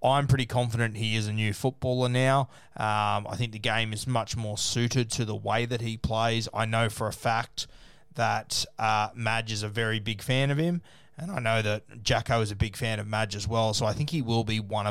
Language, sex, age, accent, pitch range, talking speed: English, male, 20-39, Australian, 105-120 Hz, 240 wpm